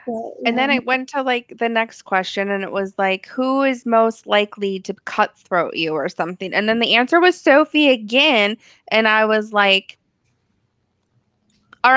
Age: 20-39